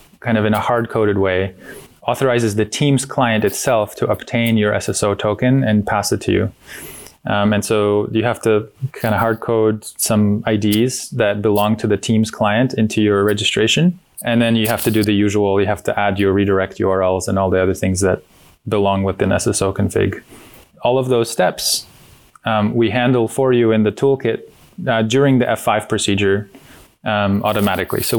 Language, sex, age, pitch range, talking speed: English, male, 20-39, 100-115 Hz, 185 wpm